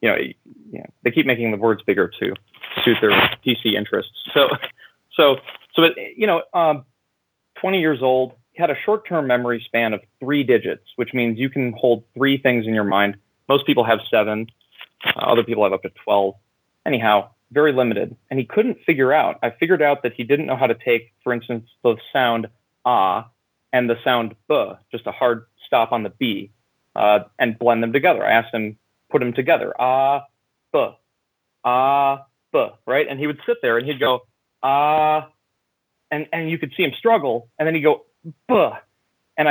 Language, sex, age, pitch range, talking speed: English, male, 30-49, 115-155 Hz, 190 wpm